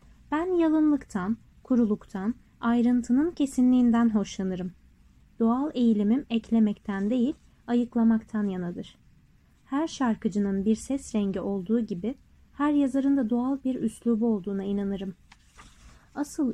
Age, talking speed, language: 30-49, 100 wpm, Turkish